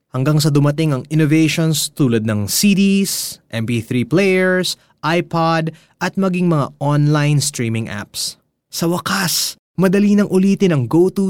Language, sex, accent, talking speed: Filipino, male, native, 125 wpm